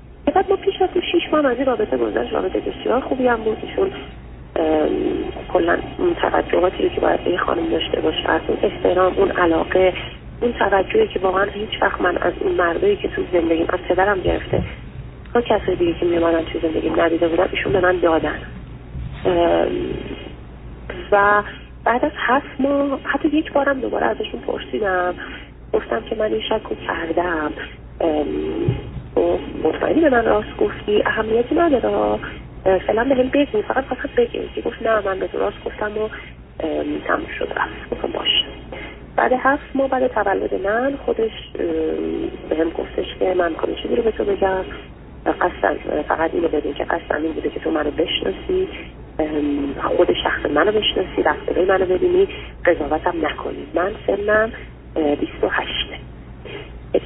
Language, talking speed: Persian, 150 wpm